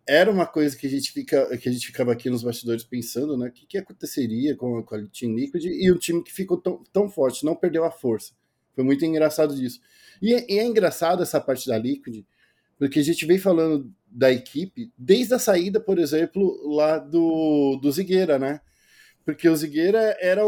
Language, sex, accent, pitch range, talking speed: Portuguese, male, Brazilian, 135-185 Hz, 210 wpm